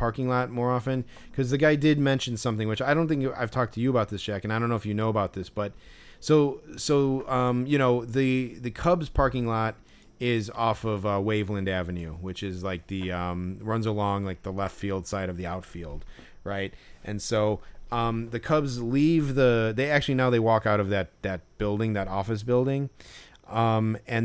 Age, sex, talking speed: 30-49, male, 210 wpm